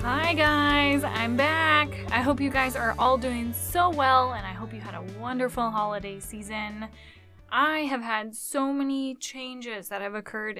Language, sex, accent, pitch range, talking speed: English, female, American, 210-265 Hz, 175 wpm